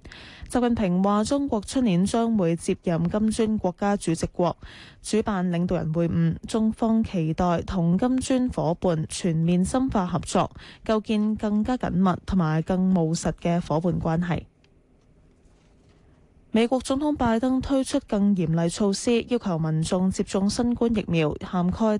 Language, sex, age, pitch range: Chinese, female, 10-29, 170-220 Hz